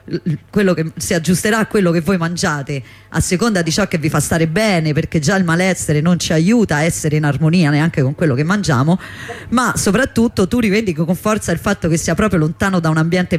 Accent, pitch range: native, 155-185 Hz